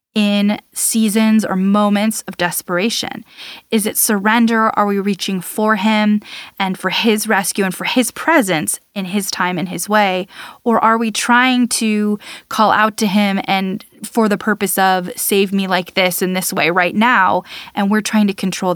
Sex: female